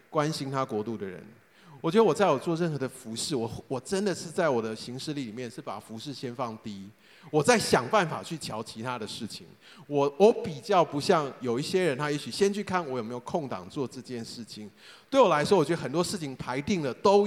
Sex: male